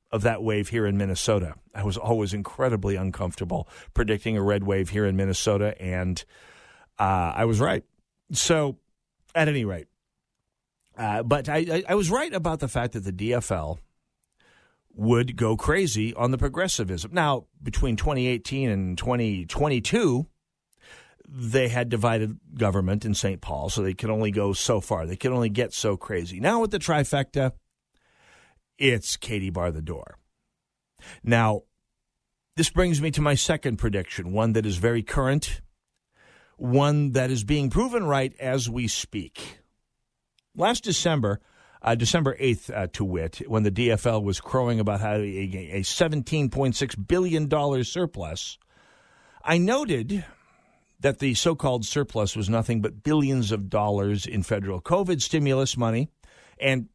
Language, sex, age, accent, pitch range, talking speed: English, male, 50-69, American, 100-135 Hz, 145 wpm